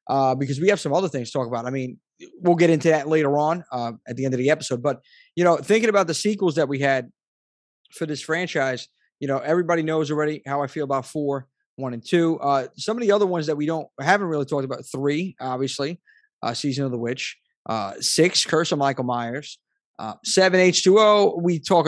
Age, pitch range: 20-39, 140-175 Hz